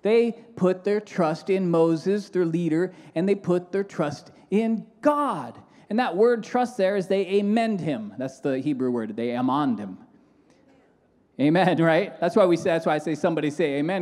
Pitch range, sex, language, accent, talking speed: 160-230 Hz, male, English, American, 175 wpm